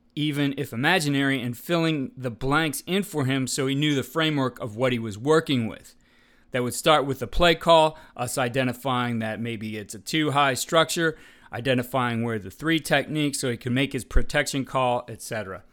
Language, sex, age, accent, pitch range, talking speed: English, male, 40-59, American, 120-150 Hz, 190 wpm